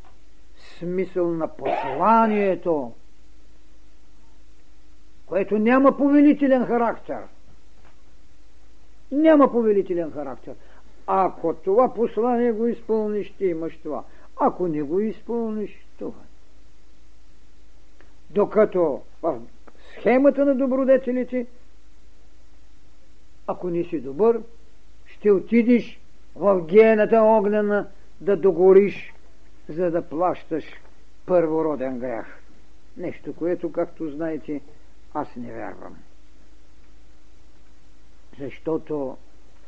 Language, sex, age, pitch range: Bulgarian, male, 60-79, 155-215 Hz